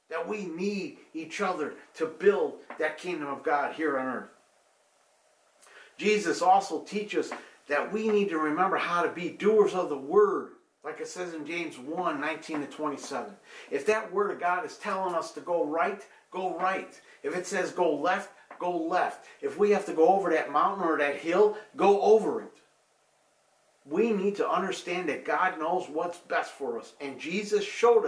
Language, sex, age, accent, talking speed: English, male, 50-69, American, 180 wpm